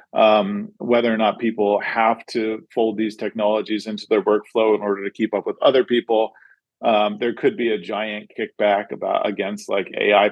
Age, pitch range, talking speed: 40-59, 100-120 Hz, 185 wpm